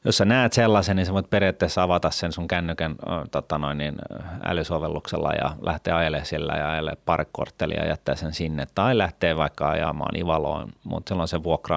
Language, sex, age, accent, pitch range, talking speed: Finnish, male, 30-49, native, 80-100 Hz, 180 wpm